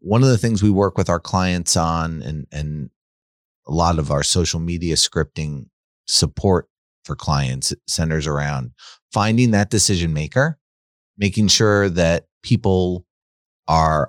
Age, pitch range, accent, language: 30-49, 90-115 Hz, American, English